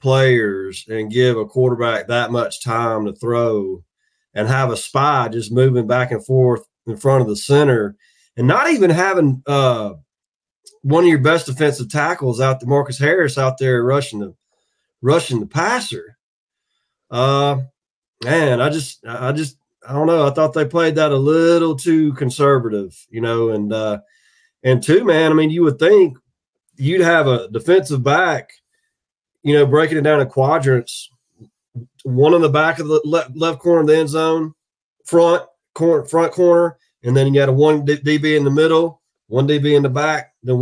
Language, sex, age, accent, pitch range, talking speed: English, male, 20-39, American, 125-155 Hz, 185 wpm